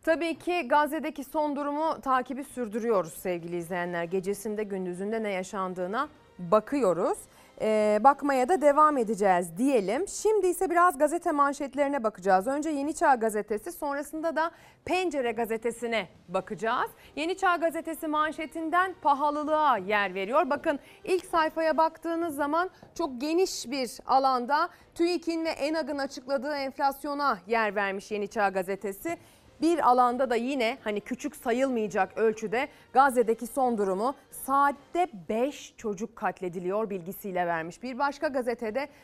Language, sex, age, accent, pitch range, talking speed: Turkish, female, 30-49, native, 210-305 Hz, 125 wpm